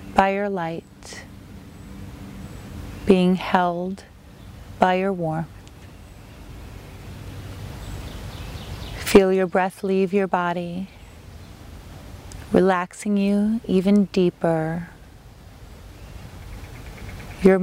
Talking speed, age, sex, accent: 65 wpm, 30-49, female, American